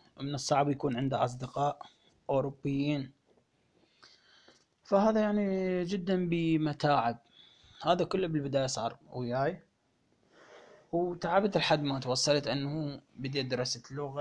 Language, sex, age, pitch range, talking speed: Arabic, male, 20-39, 125-155 Hz, 95 wpm